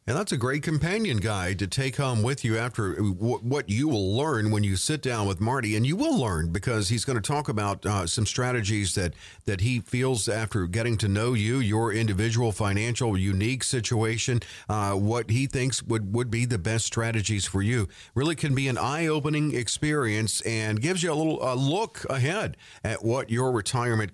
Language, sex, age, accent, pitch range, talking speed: English, male, 50-69, American, 105-140 Hz, 195 wpm